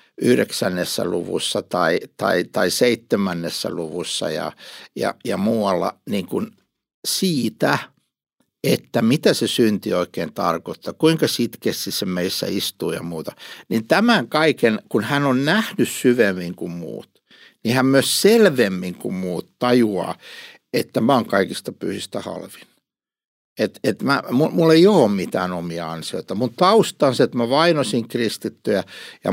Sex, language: male, Finnish